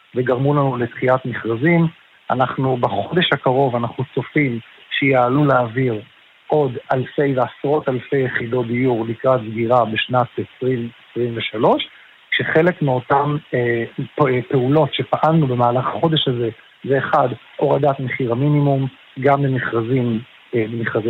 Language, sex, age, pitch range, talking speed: Hebrew, male, 50-69, 125-150 Hz, 105 wpm